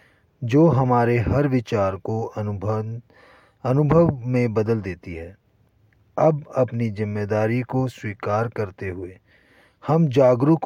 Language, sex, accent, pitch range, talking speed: Hindi, male, native, 105-130 Hz, 115 wpm